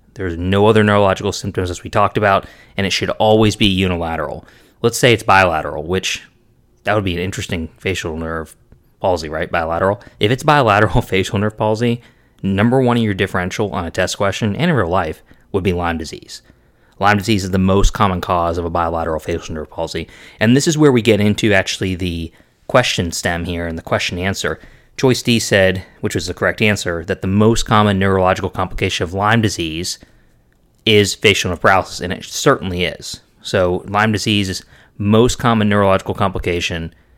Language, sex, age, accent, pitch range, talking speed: English, male, 30-49, American, 90-110 Hz, 180 wpm